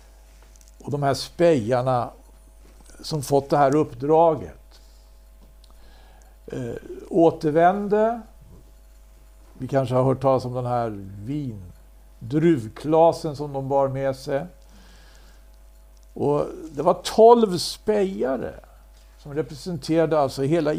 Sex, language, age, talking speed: male, Swedish, 60-79, 90 wpm